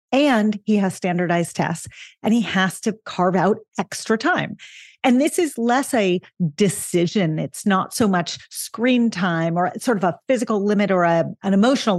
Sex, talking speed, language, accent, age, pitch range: female, 170 wpm, English, American, 40-59, 170-220 Hz